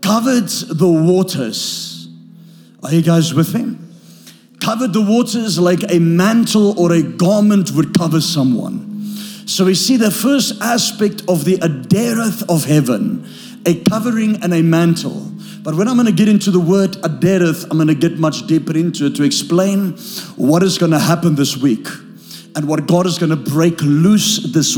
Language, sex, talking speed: English, male, 175 wpm